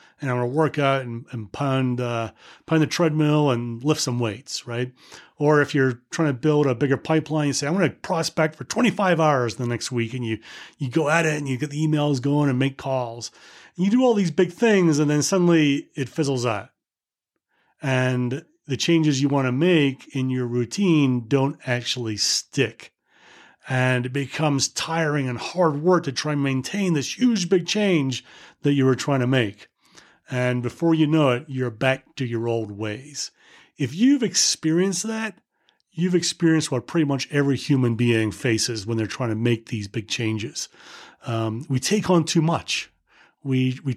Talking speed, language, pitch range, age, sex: 190 wpm, English, 125-160 Hz, 30-49, male